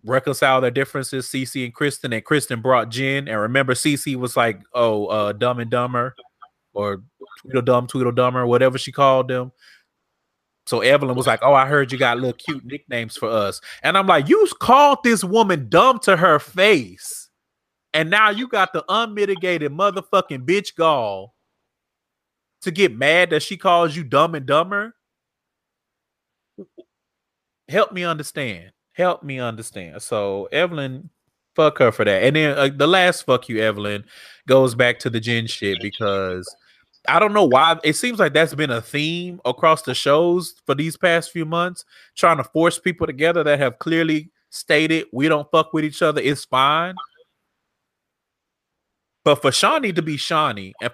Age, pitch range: 30-49, 125-175 Hz